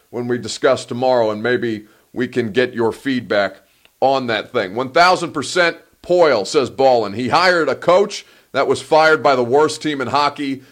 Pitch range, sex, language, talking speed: 125-165 Hz, male, English, 175 wpm